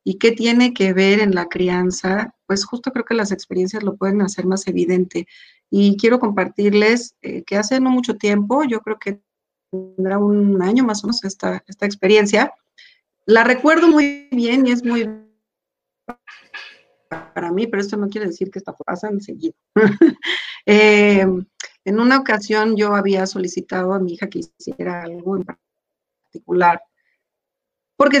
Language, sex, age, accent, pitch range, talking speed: Spanish, female, 30-49, Mexican, 185-235 Hz, 160 wpm